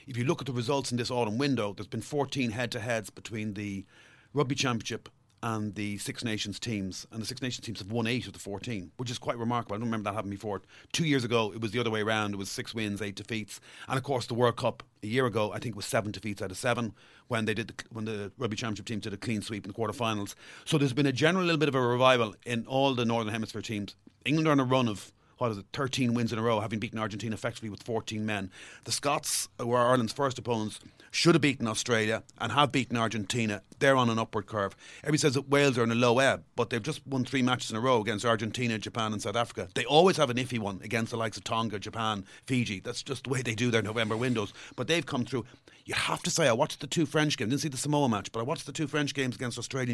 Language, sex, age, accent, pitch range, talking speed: English, male, 40-59, Irish, 110-130 Hz, 270 wpm